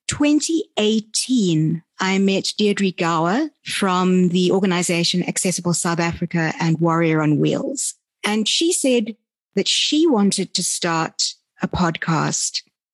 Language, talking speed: English, 115 wpm